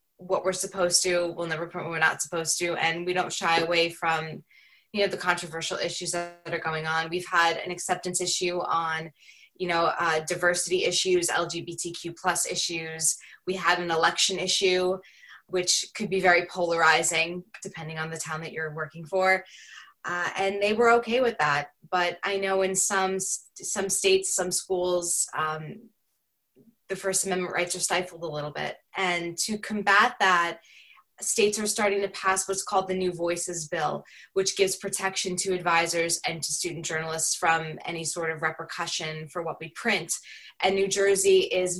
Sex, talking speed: female, 175 wpm